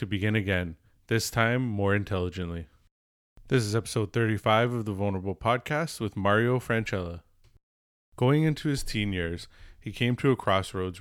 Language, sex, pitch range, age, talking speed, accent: English, male, 95-115 Hz, 20-39, 145 wpm, American